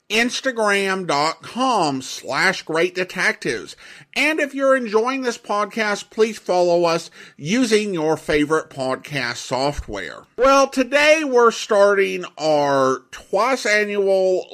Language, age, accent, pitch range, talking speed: English, 50-69, American, 155-245 Hz, 95 wpm